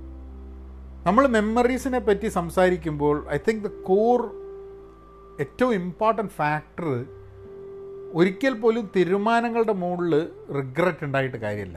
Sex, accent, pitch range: male, native, 125-210 Hz